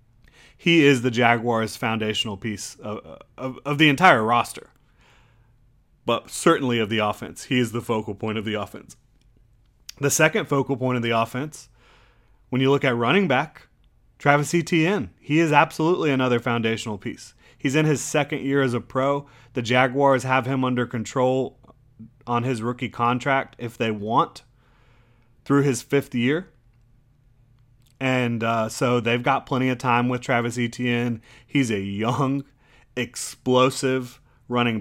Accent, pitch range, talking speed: American, 115-135 Hz, 150 wpm